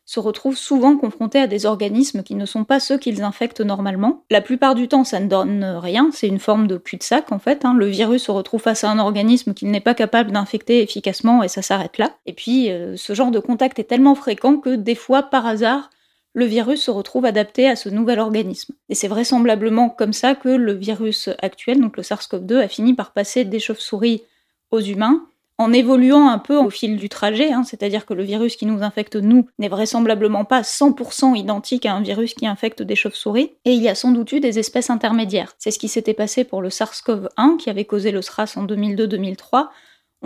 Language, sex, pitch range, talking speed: French, female, 210-250 Hz, 220 wpm